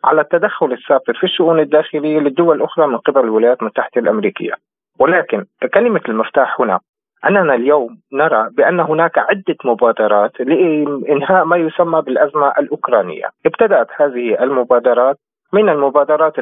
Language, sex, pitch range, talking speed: Arabic, male, 135-175 Hz, 125 wpm